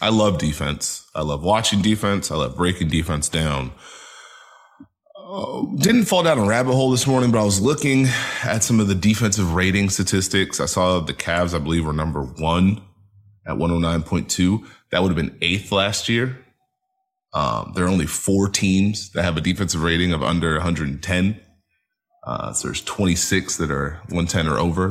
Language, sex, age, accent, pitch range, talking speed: English, male, 30-49, American, 80-105 Hz, 175 wpm